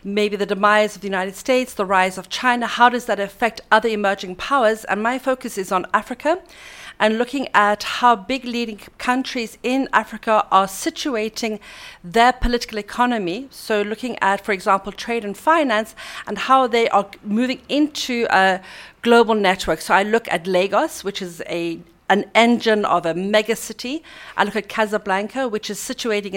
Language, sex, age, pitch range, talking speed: English, female, 40-59, 200-245 Hz, 170 wpm